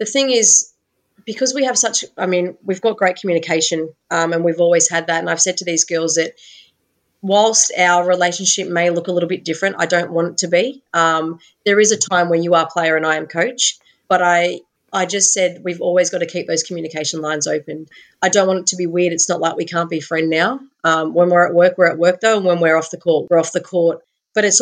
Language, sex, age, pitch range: English, female, 30-49, 165-185 Hz